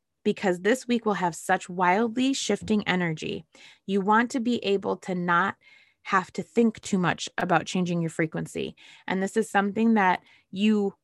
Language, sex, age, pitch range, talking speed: English, female, 20-39, 185-230 Hz, 170 wpm